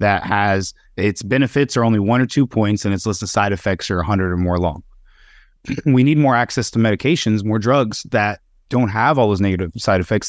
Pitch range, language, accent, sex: 90-110 Hz, English, American, male